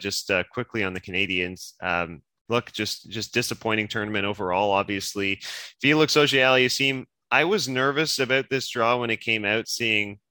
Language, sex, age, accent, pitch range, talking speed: English, male, 20-39, American, 100-125 Hz, 170 wpm